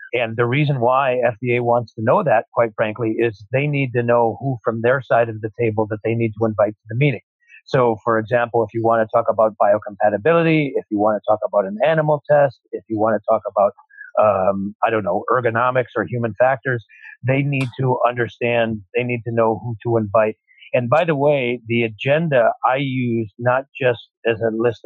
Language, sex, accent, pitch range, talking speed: English, male, American, 110-125 Hz, 210 wpm